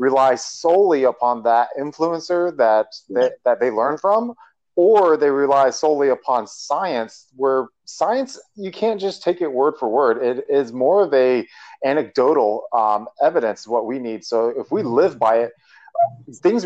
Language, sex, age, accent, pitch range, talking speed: English, male, 30-49, American, 110-140 Hz, 160 wpm